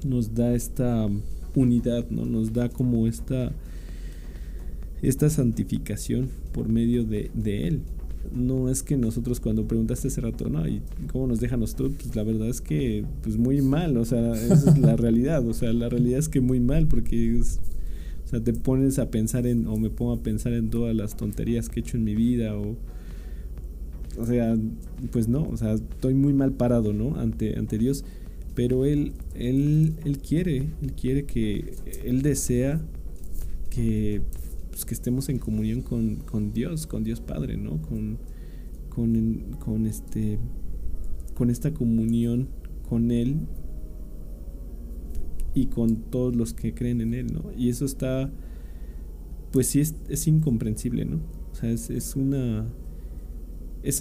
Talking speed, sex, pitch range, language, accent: 165 wpm, male, 105-125 Hz, Spanish, Mexican